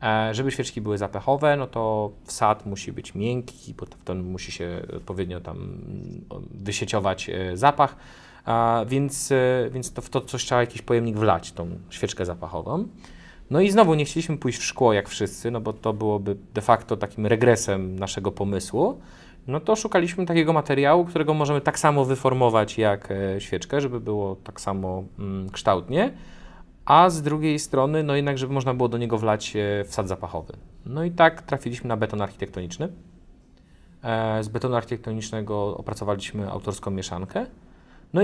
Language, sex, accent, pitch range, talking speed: Polish, male, native, 100-140 Hz, 150 wpm